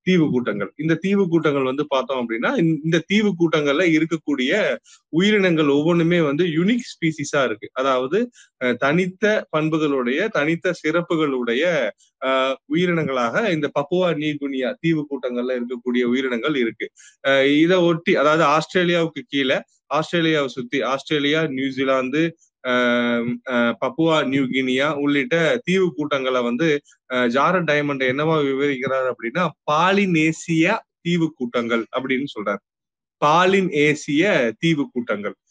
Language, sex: Tamil, male